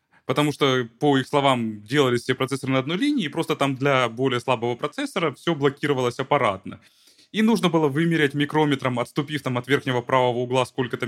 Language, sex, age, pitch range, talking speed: Ukrainian, male, 20-39, 135-180 Hz, 180 wpm